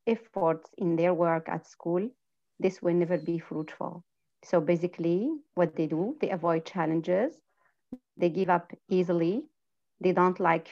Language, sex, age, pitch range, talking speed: English, female, 30-49, 170-215 Hz, 145 wpm